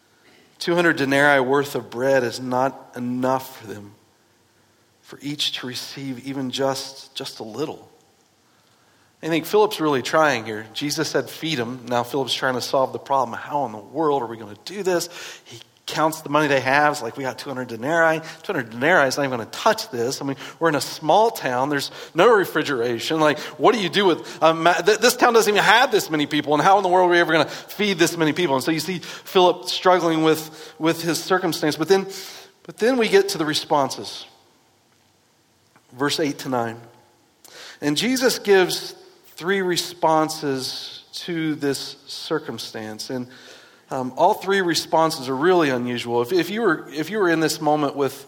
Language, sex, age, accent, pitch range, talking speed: English, male, 40-59, American, 130-170 Hz, 195 wpm